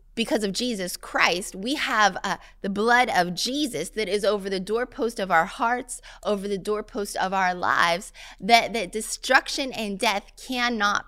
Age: 20-39